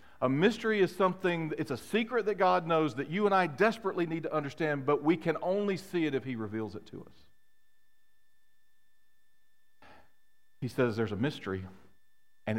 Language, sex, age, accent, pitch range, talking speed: English, male, 40-59, American, 110-185 Hz, 170 wpm